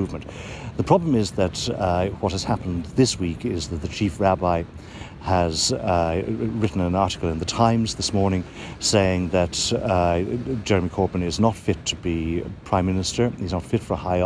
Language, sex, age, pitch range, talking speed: English, male, 60-79, 90-110 Hz, 180 wpm